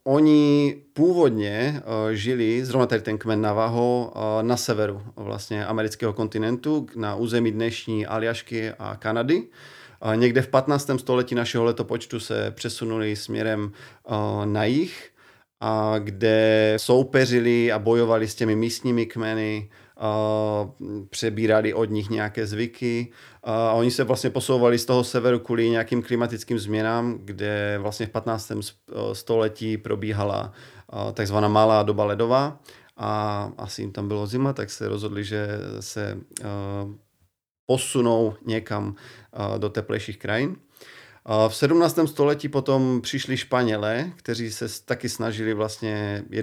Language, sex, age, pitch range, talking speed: Slovak, male, 30-49, 105-120 Hz, 120 wpm